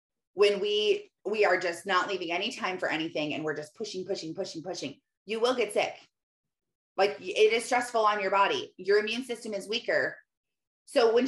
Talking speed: 190 wpm